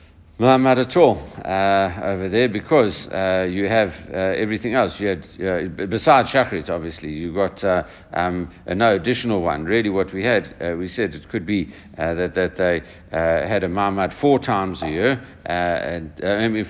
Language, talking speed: English, 190 wpm